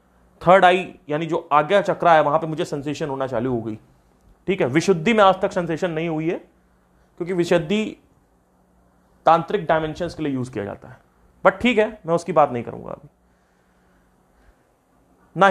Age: 30-49